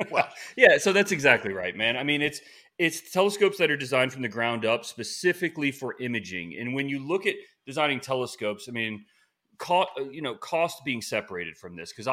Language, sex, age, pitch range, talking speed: English, male, 30-49, 110-150 Hz, 200 wpm